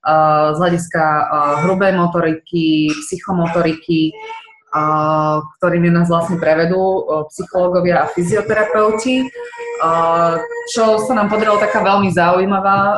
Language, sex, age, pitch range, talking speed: Slovak, female, 20-39, 165-195 Hz, 90 wpm